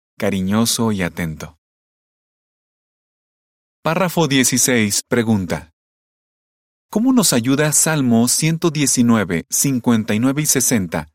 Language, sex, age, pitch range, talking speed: Spanish, male, 30-49, 95-135 Hz, 75 wpm